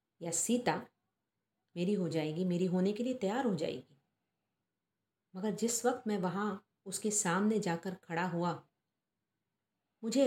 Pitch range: 175-220 Hz